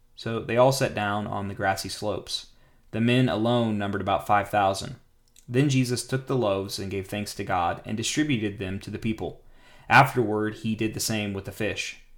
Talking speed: 190 wpm